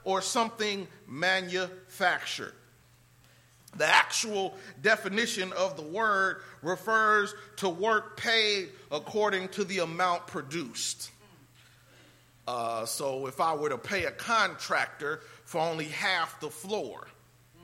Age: 40-59